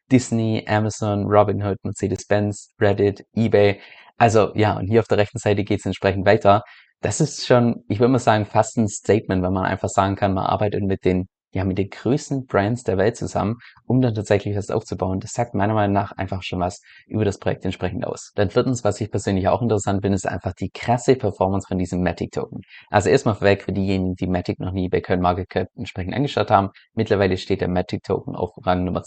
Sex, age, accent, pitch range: male, 20-39, German, 95-115 Hz